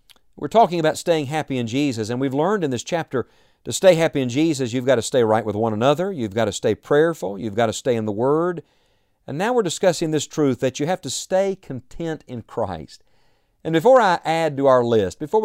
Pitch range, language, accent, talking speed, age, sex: 120-165 Hz, English, American, 235 wpm, 50-69, male